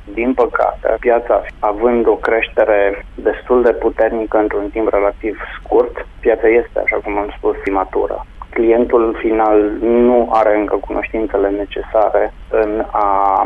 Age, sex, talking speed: 20-39, male, 130 wpm